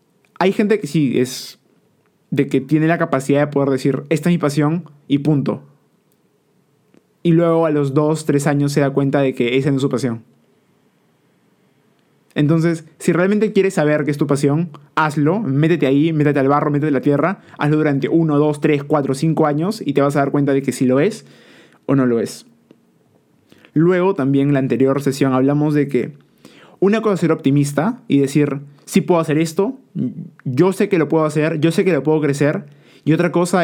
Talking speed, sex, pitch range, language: 205 wpm, male, 140-165 Hz, Spanish